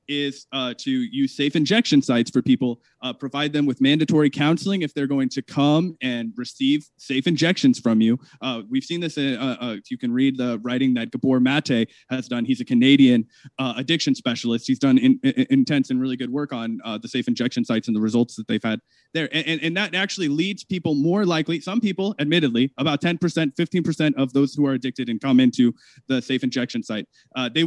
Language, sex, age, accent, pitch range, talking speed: English, male, 20-39, American, 130-170 Hz, 215 wpm